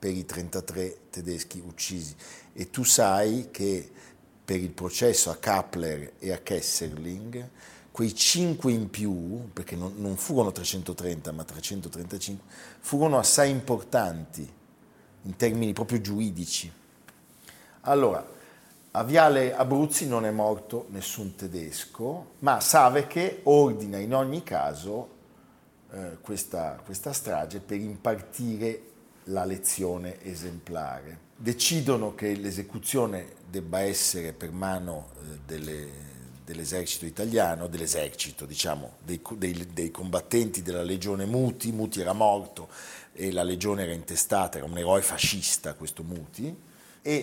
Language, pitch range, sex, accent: Italian, 90-115 Hz, male, native